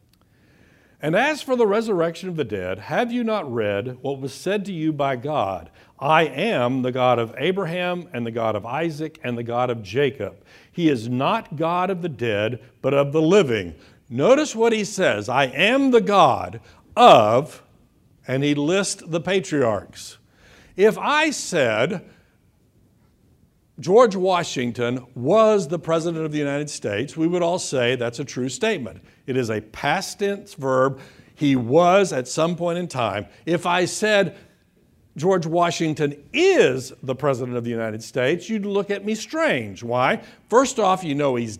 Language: English